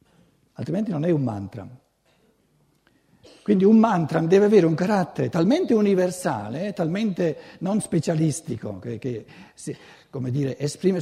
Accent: native